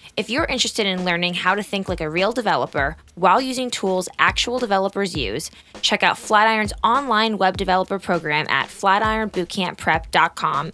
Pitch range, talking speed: 165-210 Hz, 150 wpm